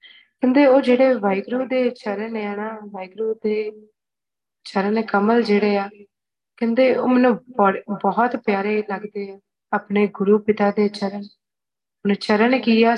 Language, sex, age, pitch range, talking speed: Punjabi, female, 20-39, 205-235 Hz, 130 wpm